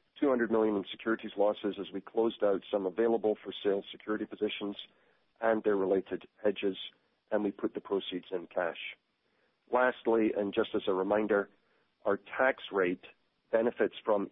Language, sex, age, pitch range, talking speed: English, male, 50-69, 100-115 Hz, 155 wpm